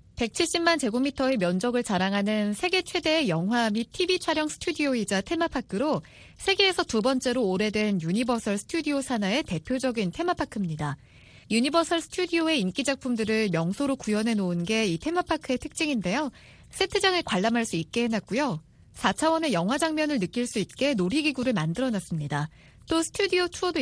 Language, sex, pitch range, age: Korean, female, 190-310 Hz, 20-39